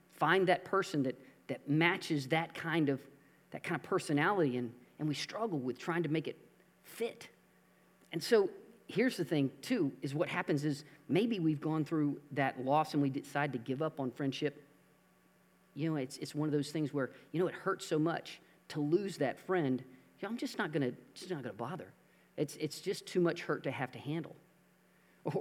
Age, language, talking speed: 40-59, English, 200 wpm